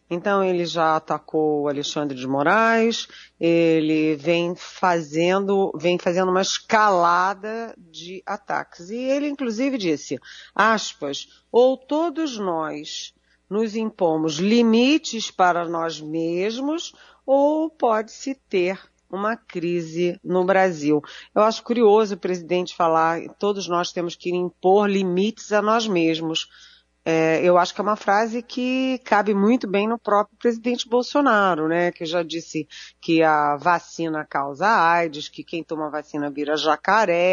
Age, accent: 40-59, Brazilian